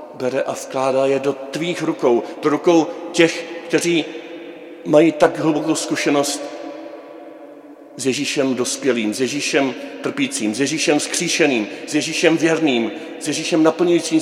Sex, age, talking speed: male, 40-59, 125 wpm